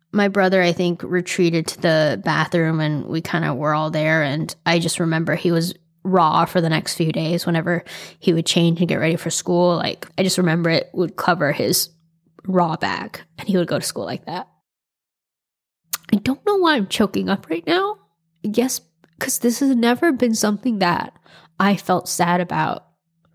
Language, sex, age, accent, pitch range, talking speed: English, female, 10-29, American, 165-205 Hz, 195 wpm